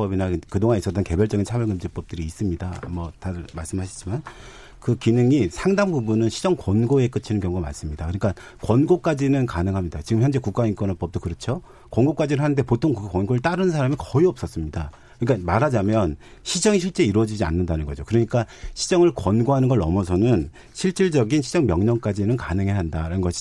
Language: Korean